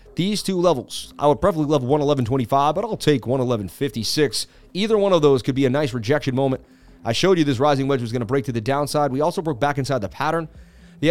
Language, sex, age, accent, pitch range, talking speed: English, male, 30-49, American, 125-155 Hz, 230 wpm